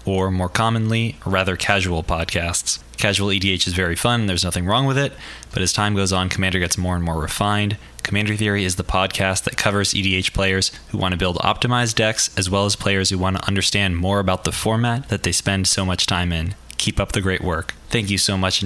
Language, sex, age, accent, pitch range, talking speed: English, male, 20-39, American, 90-105 Hz, 225 wpm